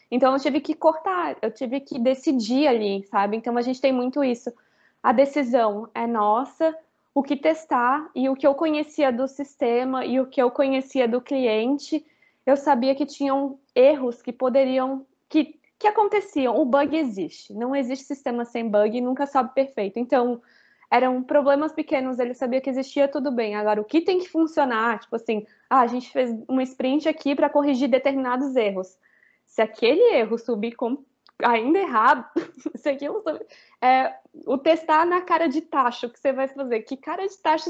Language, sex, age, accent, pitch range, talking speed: Portuguese, female, 20-39, Brazilian, 250-295 Hz, 180 wpm